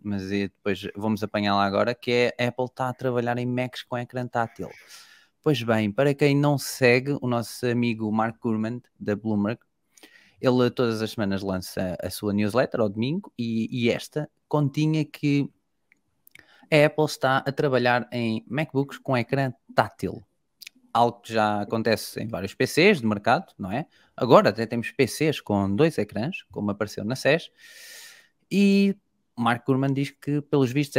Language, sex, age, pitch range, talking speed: Portuguese, male, 20-39, 110-135 Hz, 165 wpm